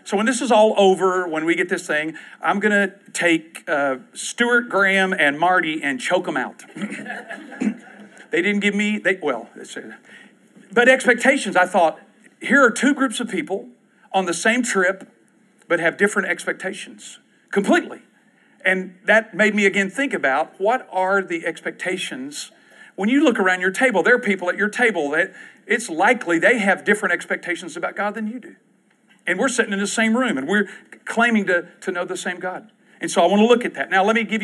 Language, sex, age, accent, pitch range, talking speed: English, male, 50-69, American, 170-225 Hz, 200 wpm